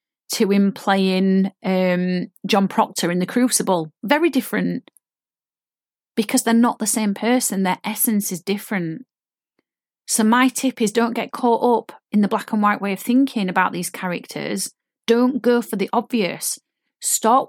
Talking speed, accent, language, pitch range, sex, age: 160 wpm, British, English, 195-245 Hz, female, 30-49